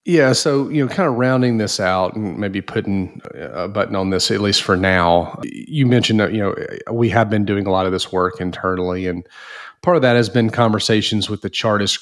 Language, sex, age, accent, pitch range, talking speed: English, male, 30-49, American, 95-115 Hz, 225 wpm